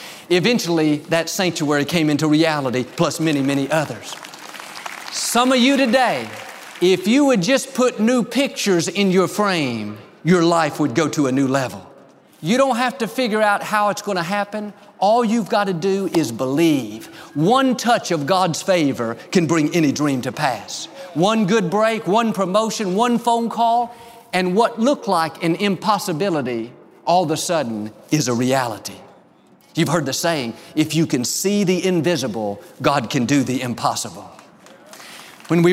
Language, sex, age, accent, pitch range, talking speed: English, male, 50-69, American, 150-205 Hz, 165 wpm